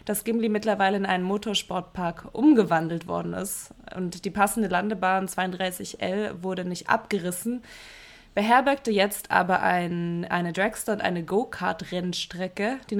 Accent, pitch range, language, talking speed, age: German, 185-230 Hz, German, 125 wpm, 20-39